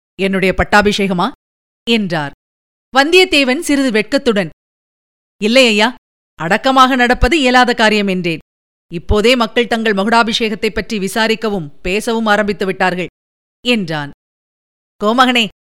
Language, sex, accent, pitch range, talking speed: Tamil, female, native, 195-250 Hz, 90 wpm